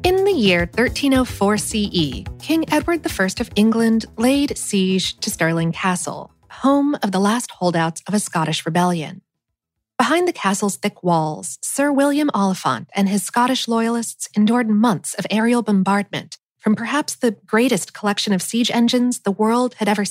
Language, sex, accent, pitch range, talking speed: English, female, American, 180-245 Hz, 160 wpm